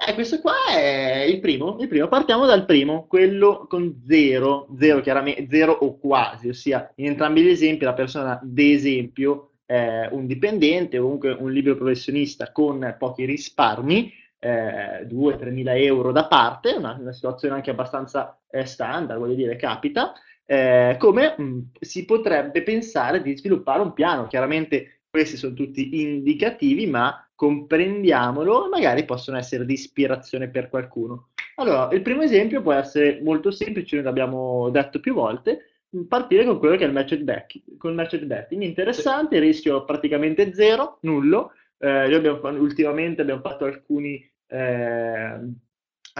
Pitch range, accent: 130-165 Hz, native